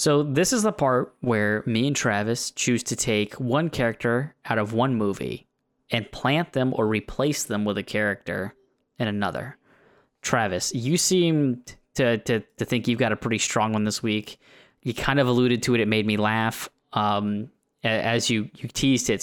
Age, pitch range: 10-29, 115-135 Hz